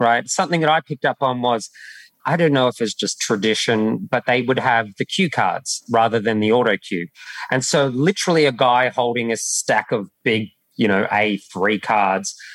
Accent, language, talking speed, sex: Australian, English, 195 wpm, male